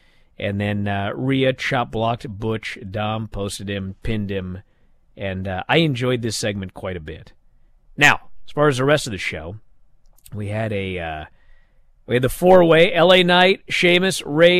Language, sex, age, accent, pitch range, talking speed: English, male, 40-59, American, 105-165 Hz, 170 wpm